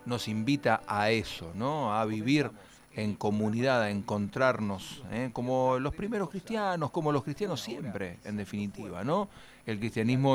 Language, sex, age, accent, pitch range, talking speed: Spanish, male, 40-59, Argentinian, 100-130 Hz, 140 wpm